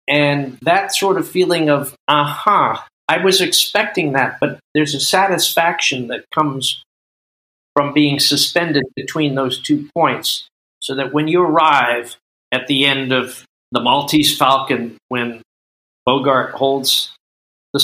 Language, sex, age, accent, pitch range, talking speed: English, male, 50-69, American, 125-155 Hz, 140 wpm